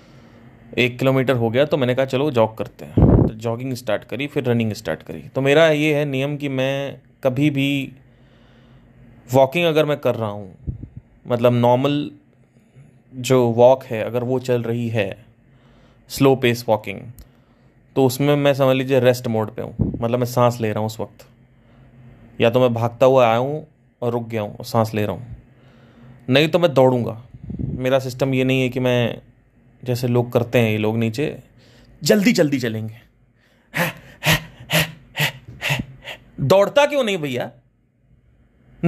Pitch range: 120-145 Hz